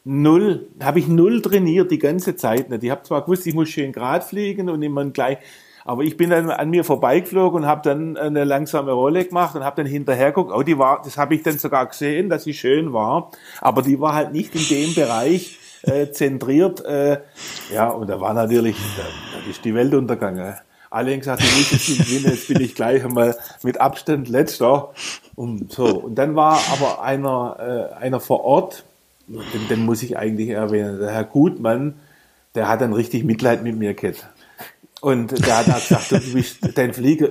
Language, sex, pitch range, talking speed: German, male, 120-150 Hz, 205 wpm